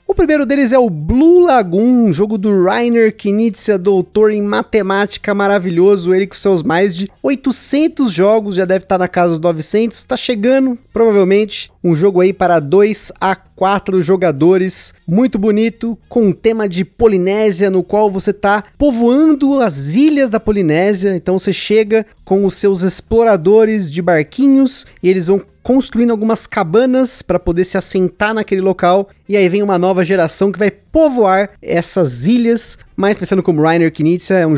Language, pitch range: Portuguese, 175-225 Hz